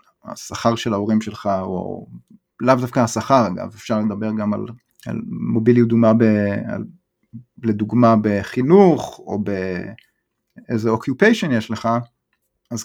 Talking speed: 120 wpm